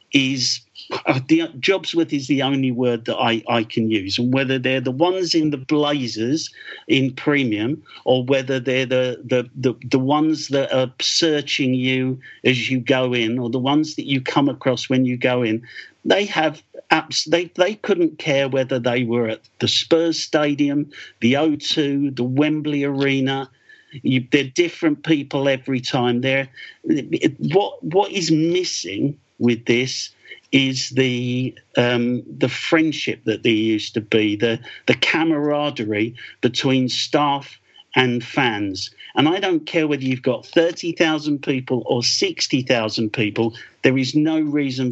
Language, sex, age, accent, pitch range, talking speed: English, male, 50-69, British, 125-155 Hz, 160 wpm